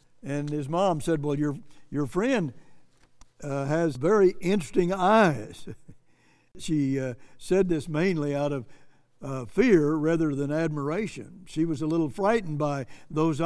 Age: 60-79